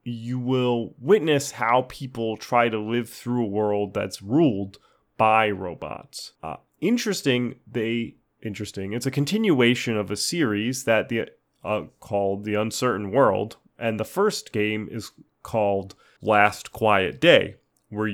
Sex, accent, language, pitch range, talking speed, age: male, American, English, 105-145 Hz, 140 wpm, 30-49